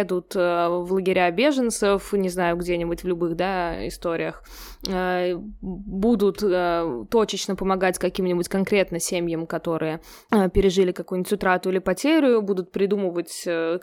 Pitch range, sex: 180-210 Hz, female